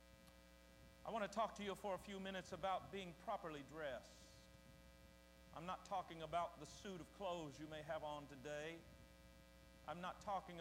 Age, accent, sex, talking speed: 50-69, American, male, 170 wpm